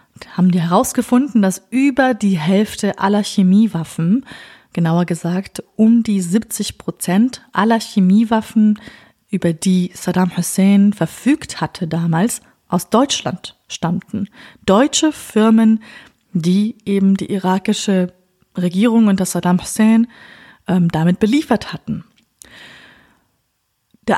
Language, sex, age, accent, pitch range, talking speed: German, female, 30-49, German, 185-230 Hz, 105 wpm